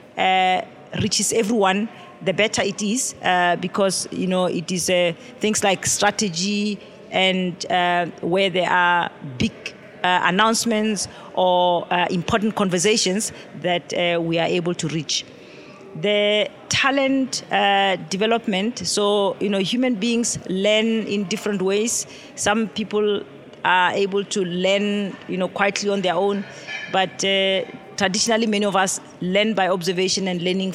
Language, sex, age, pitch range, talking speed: English, female, 40-59, 180-205 Hz, 140 wpm